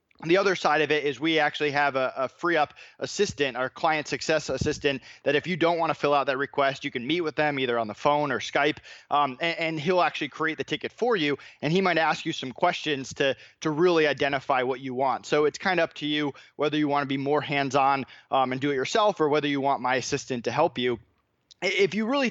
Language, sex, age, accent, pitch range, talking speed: English, male, 20-39, American, 140-165 Hz, 255 wpm